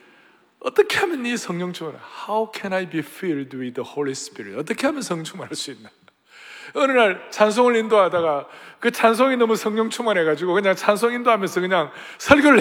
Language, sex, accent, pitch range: Korean, male, native, 155-235 Hz